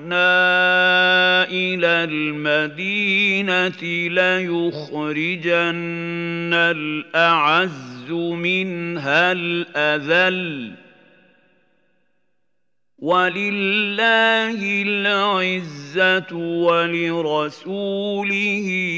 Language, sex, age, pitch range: Arabic, male, 50-69, 155-185 Hz